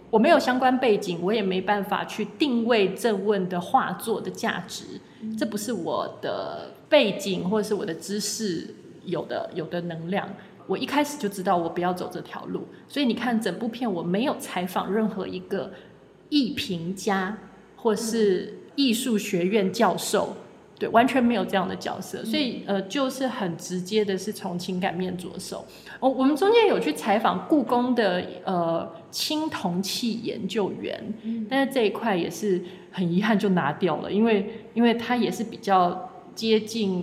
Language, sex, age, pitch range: Chinese, female, 20-39, 190-230 Hz